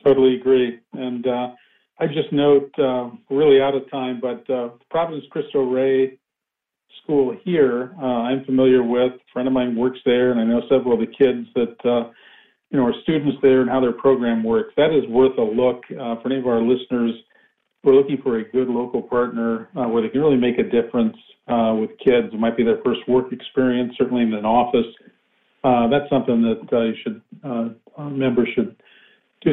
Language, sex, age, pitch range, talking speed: English, male, 40-59, 120-135 Hz, 205 wpm